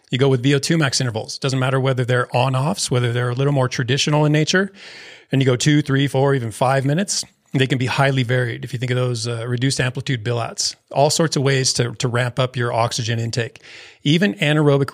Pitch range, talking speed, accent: 125-145 Hz, 235 wpm, American